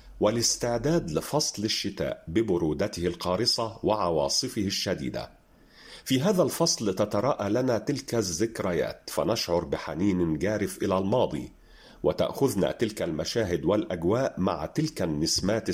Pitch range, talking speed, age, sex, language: 95-135 Hz, 100 wpm, 50-69, male, Arabic